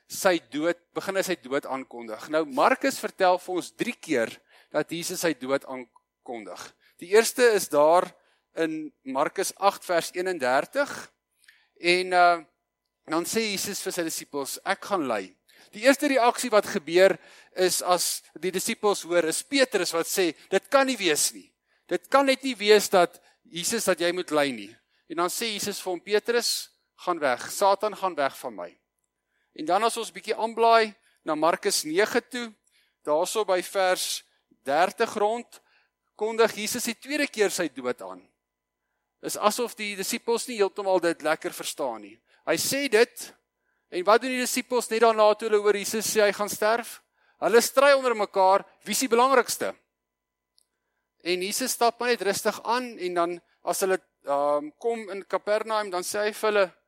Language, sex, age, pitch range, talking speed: English, male, 50-69, 175-230 Hz, 170 wpm